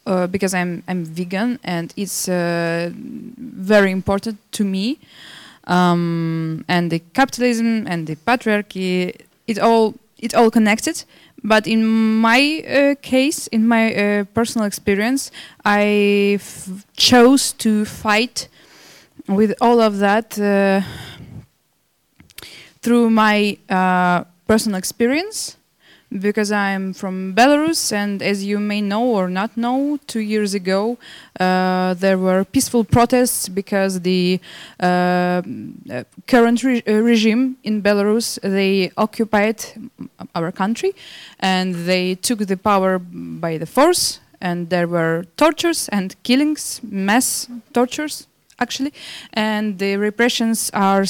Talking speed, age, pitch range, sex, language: 120 wpm, 20-39, 185-235 Hz, female, English